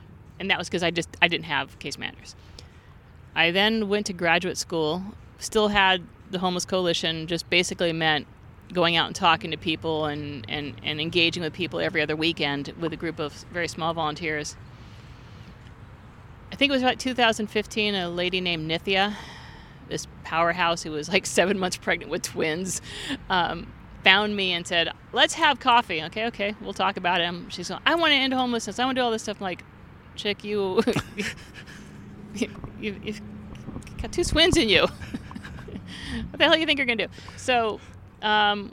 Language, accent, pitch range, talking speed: English, American, 170-210 Hz, 185 wpm